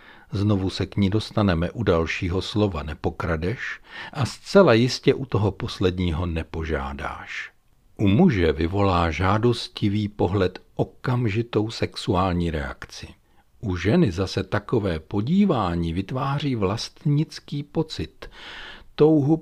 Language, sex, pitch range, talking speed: Czech, male, 95-135 Hz, 100 wpm